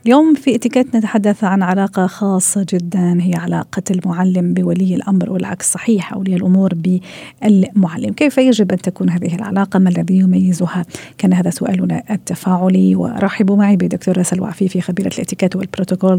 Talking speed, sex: 145 wpm, female